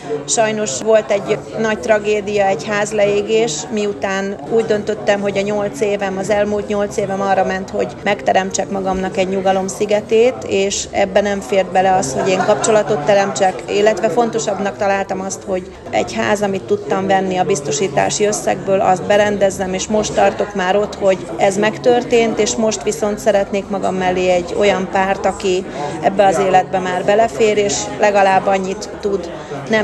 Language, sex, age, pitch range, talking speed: Hungarian, female, 30-49, 190-210 Hz, 160 wpm